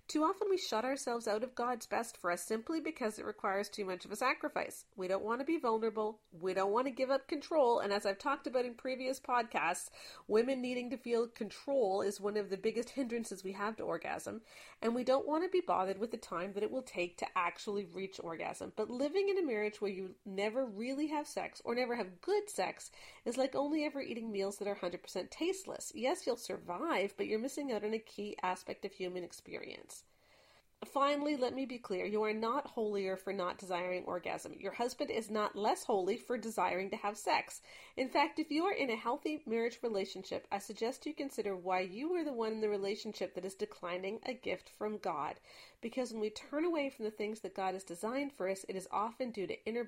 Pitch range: 195-265 Hz